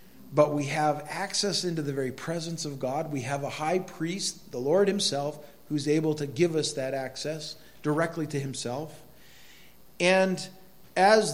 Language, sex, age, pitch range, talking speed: English, male, 50-69, 135-175 Hz, 160 wpm